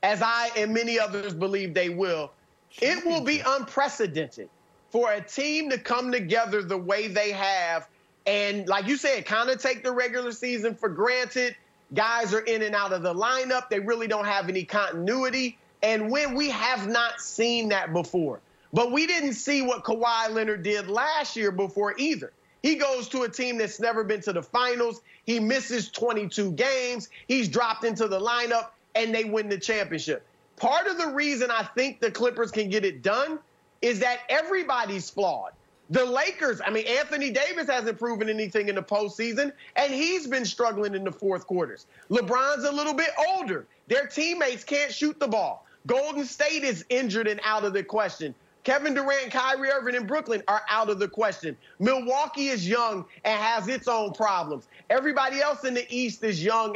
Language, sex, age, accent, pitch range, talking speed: English, male, 30-49, American, 210-260 Hz, 185 wpm